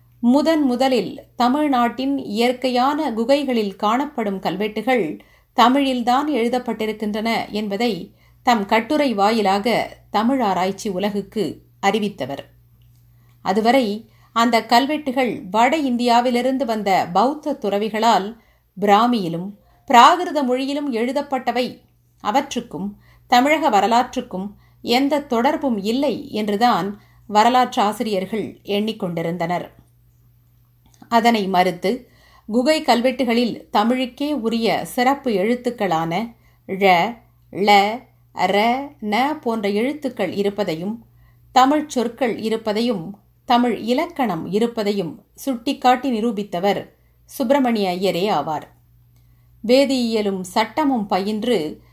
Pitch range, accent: 200-255 Hz, native